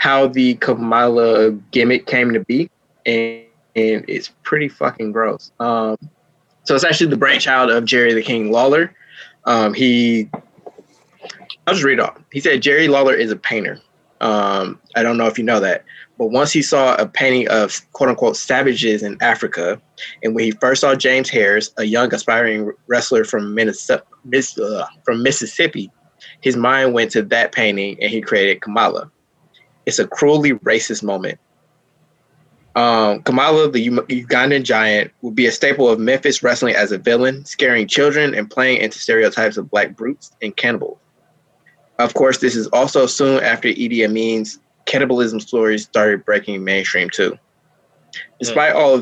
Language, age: English, 20-39